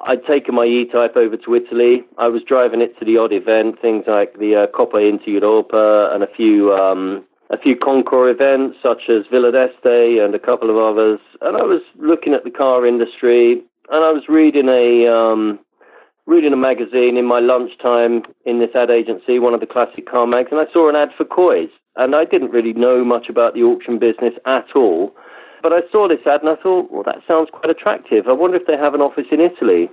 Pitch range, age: 115-155 Hz, 40-59